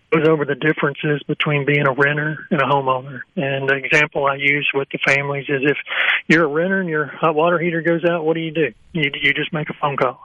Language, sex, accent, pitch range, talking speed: English, male, American, 135-155 Hz, 245 wpm